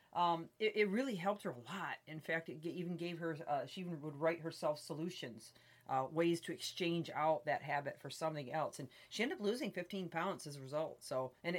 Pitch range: 155-190 Hz